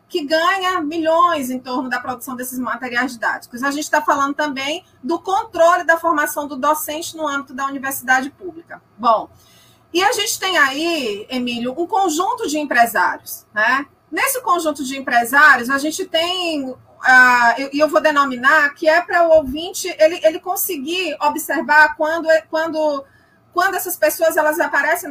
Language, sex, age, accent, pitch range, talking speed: Portuguese, female, 30-49, Brazilian, 270-345 Hz, 150 wpm